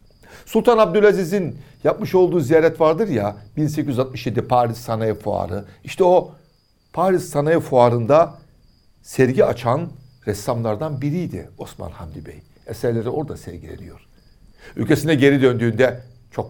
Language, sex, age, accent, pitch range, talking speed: Turkish, male, 60-79, native, 105-140 Hz, 110 wpm